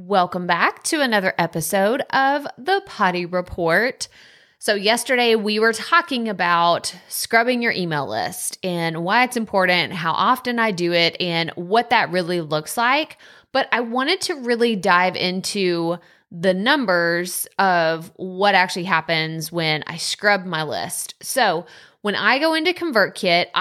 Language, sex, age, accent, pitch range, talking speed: English, female, 20-39, American, 180-235 Hz, 145 wpm